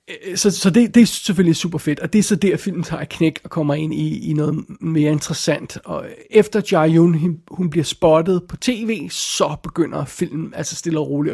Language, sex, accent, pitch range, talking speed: Danish, male, native, 155-185 Hz, 215 wpm